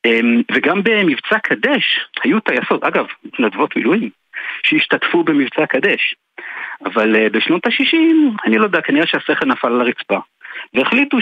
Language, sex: Hebrew, male